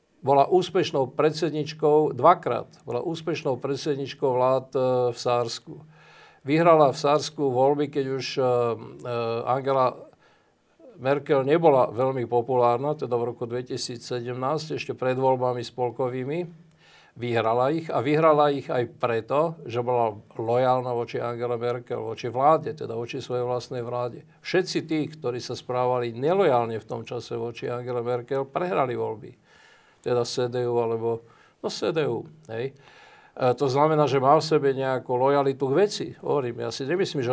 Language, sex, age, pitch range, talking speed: Slovak, male, 50-69, 125-155 Hz, 135 wpm